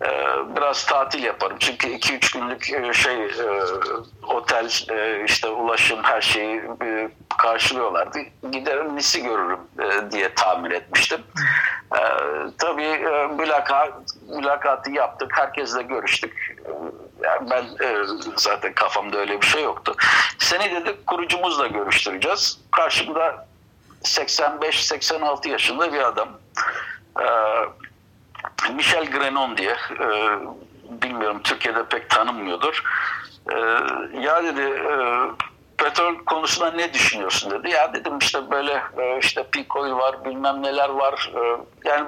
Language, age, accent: Turkish, 50-69, native